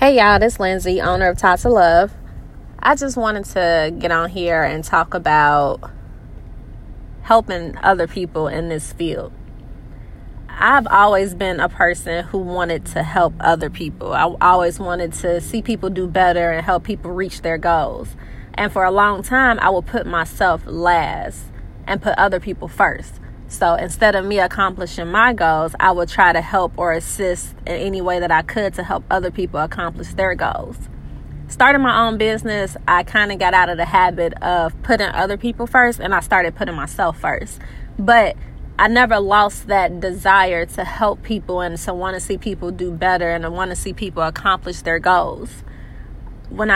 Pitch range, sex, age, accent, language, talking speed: 170-205 Hz, female, 20-39, American, English, 180 wpm